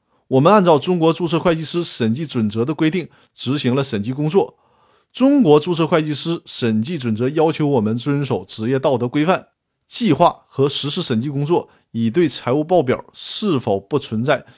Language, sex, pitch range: Chinese, male, 120-170 Hz